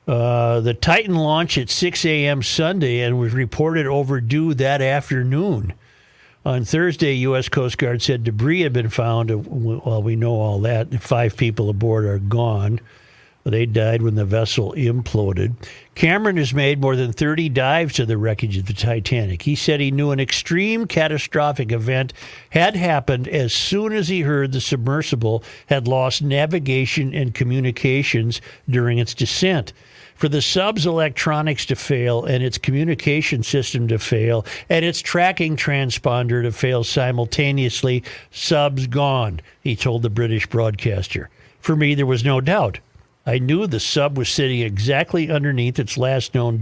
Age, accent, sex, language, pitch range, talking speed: 50-69, American, male, English, 115-150 Hz, 155 wpm